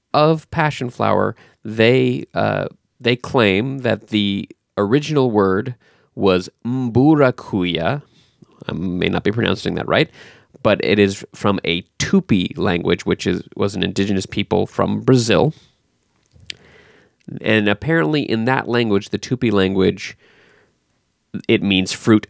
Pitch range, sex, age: 100-140 Hz, male, 20-39